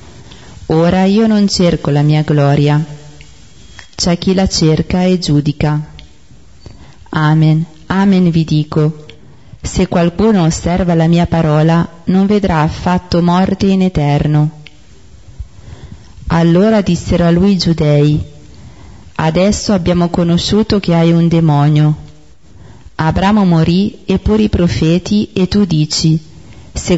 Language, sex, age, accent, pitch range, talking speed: Italian, female, 30-49, native, 150-185 Hz, 115 wpm